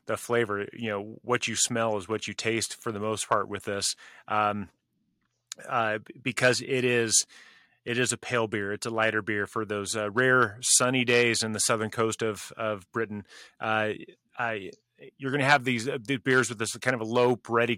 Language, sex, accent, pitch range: English, male, American, 105-120 Hz